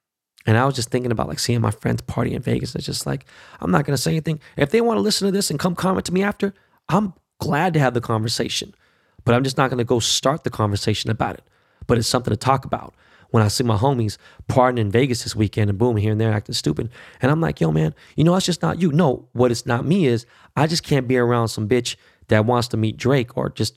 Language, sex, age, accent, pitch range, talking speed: English, male, 20-39, American, 115-145 Hz, 270 wpm